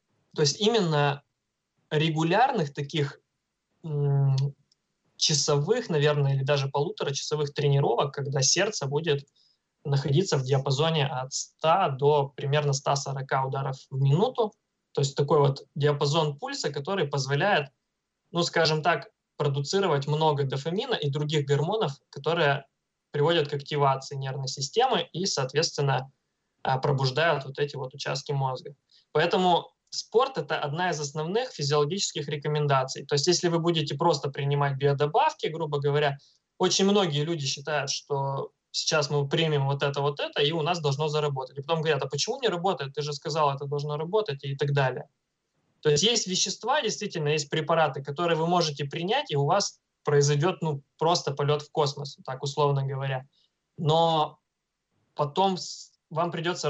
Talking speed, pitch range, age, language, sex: 145 wpm, 140-165 Hz, 20-39, Russian, male